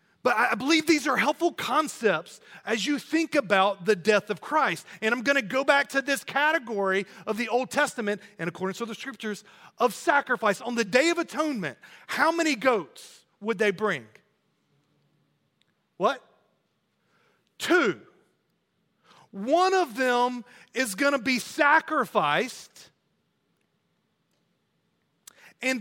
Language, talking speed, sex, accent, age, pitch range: English, 135 wpm, male, American, 40-59, 210-295 Hz